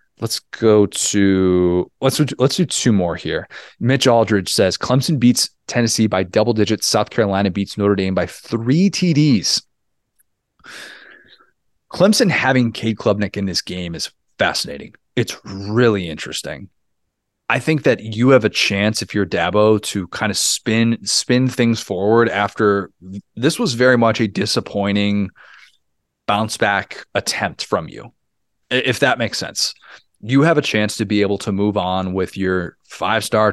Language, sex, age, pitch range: English, male, 20-39, 95-120 Hz